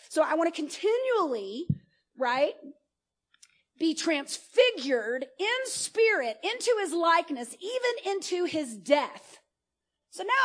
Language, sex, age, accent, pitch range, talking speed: English, female, 40-59, American, 250-375 Hz, 110 wpm